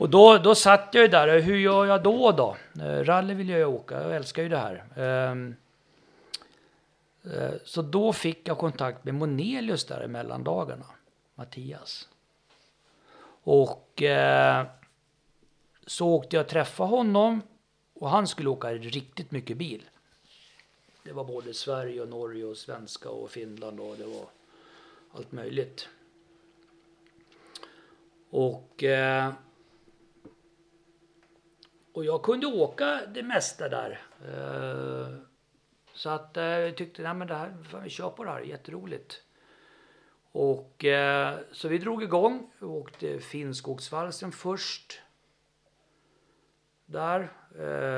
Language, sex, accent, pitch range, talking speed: Swedish, male, native, 130-180 Hz, 115 wpm